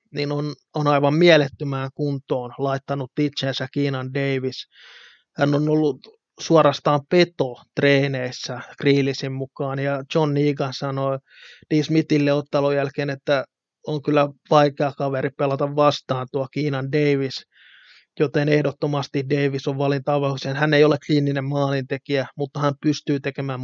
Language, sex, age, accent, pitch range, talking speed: Finnish, male, 20-39, native, 135-145 Hz, 125 wpm